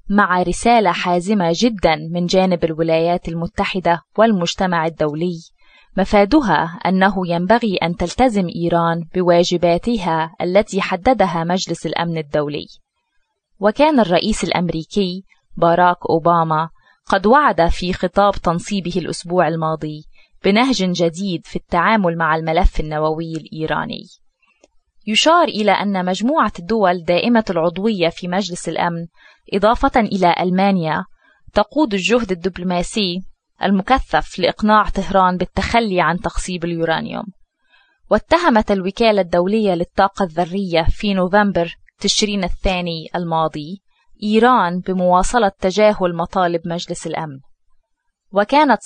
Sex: female